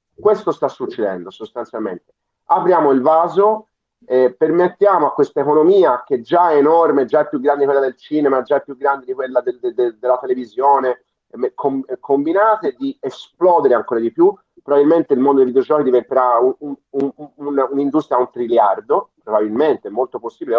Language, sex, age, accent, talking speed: Italian, male, 30-49, native, 185 wpm